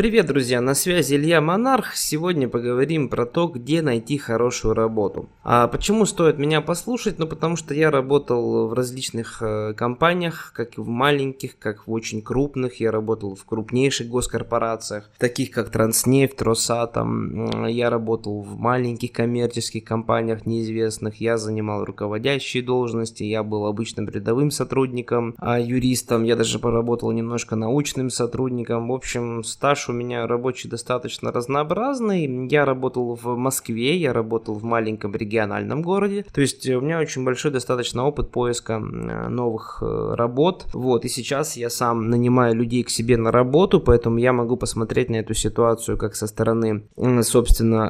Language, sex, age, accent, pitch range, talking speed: Russian, male, 20-39, native, 115-135 Hz, 145 wpm